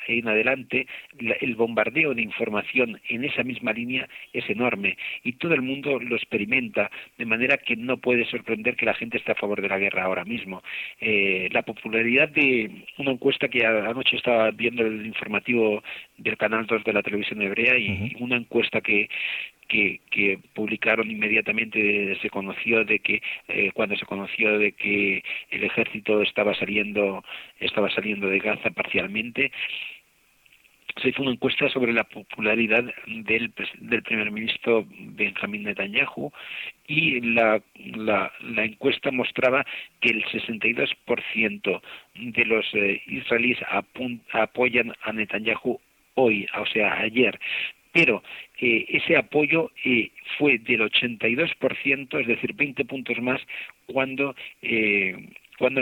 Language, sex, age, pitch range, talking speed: Spanish, male, 40-59, 105-125 Hz, 140 wpm